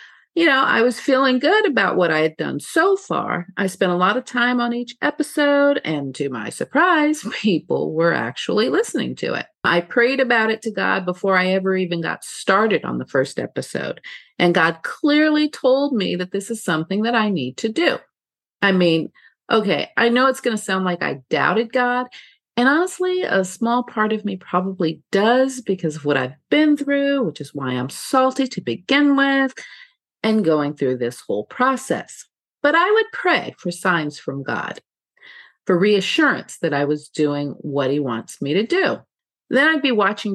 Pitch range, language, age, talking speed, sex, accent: 170-265 Hz, English, 40-59, 190 wpm, female, American